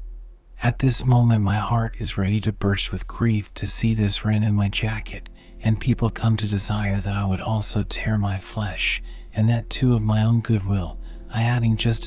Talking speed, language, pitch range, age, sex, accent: 200 wpm, English, 100-115 Hz, 40-59, male, American